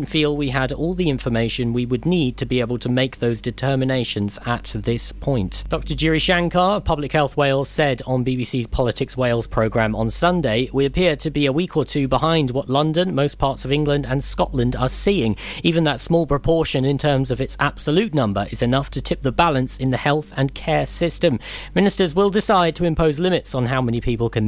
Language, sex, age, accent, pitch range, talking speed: English, male, 40-59, British, 115-150 Hz, 210 wpm